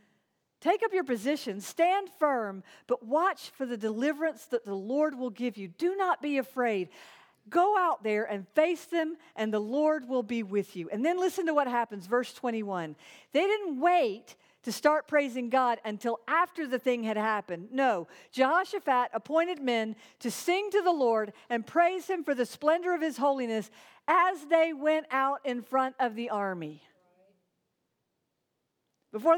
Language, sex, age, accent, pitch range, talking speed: English, female, 50-69, American, 220-325 Hz, 170 wpm